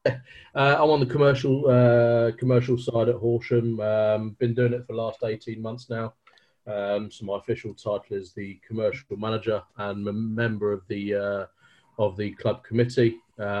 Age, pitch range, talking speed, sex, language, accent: 30-49, 100-120 Hz, 175 wpm, male, English, British